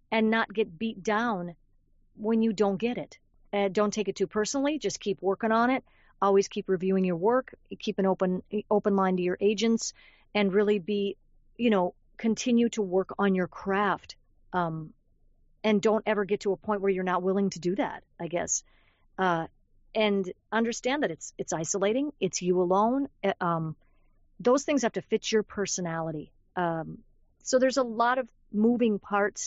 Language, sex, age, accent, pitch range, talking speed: English, female, 50-69, American, 190-235 Hz, 180 wpm